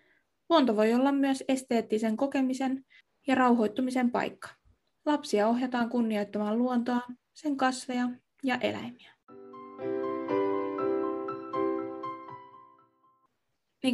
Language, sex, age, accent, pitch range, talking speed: Finnish, female, 20-39, native, 205-245 Hz, 80 wpm